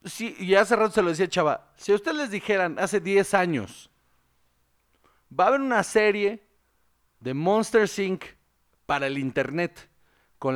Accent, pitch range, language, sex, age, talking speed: Mexican, 135-195 Hz, Spanish, male, 40-59, 160 wpm